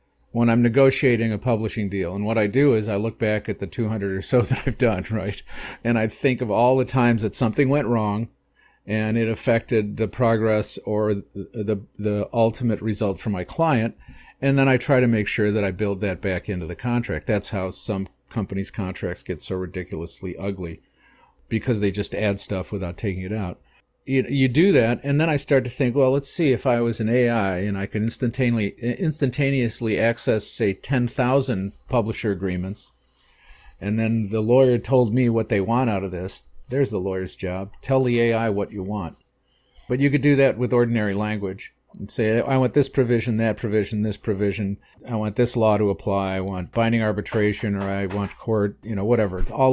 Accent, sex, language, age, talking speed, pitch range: American, male, English, 50-69, 200 wpm, 100-120 Hz